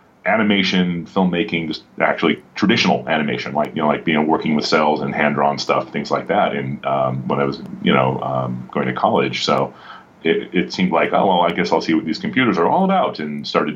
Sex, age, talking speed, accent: male, 30-49, 215 wpm, American